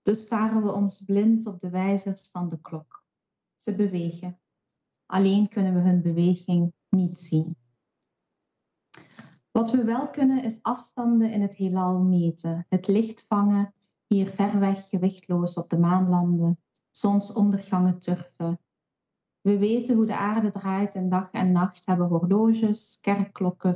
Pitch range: 175-210 Hz